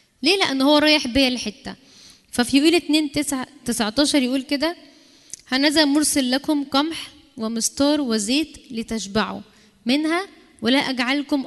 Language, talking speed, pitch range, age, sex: Arabic, 125 wpm, 245-300 Hz, 10-29, female